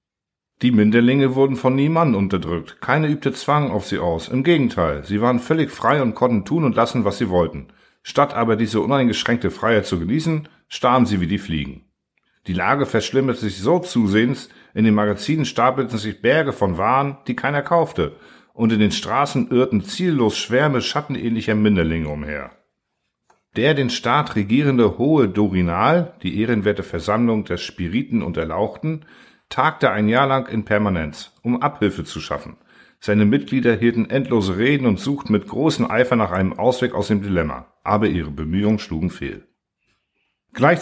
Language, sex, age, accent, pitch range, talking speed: German, male, 50-69, German, 100-135 Hz, 160 wpm